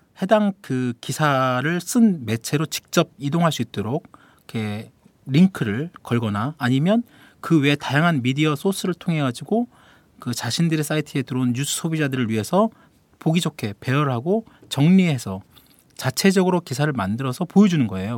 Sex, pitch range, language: male, 125-160 Hz, Korean